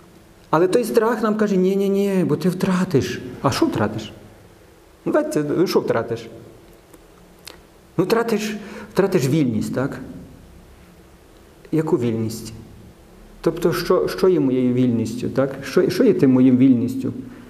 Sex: male